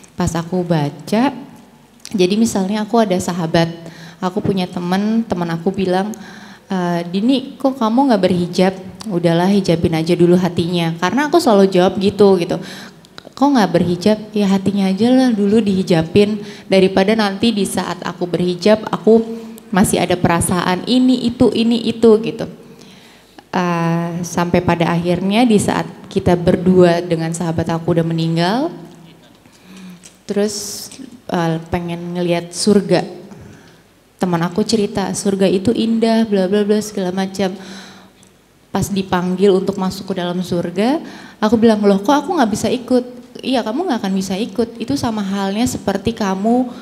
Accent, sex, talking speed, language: native, female, 135 wpm, Indonesian